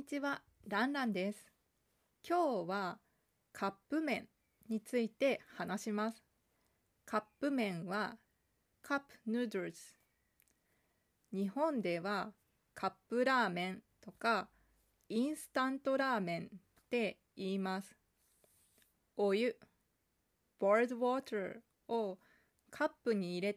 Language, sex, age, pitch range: Japanese, female, 20-39, 195-255 Hz